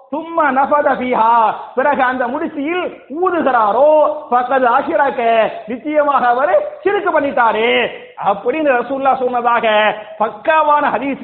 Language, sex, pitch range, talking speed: English, male, 235-285 Hz, 100 wpm